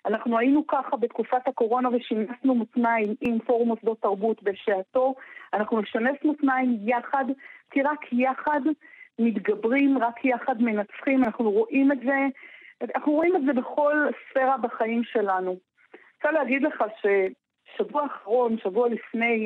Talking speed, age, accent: 135 wpm, 40-59, native